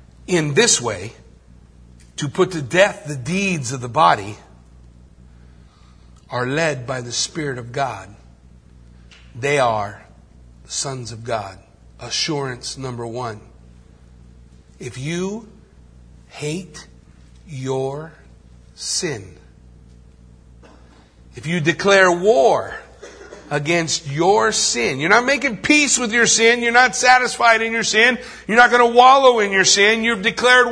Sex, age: male, 50-69